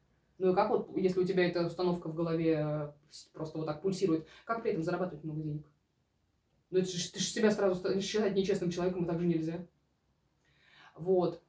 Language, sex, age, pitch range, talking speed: Russian, female, 20-39, 160-205 Hz, 185 wpm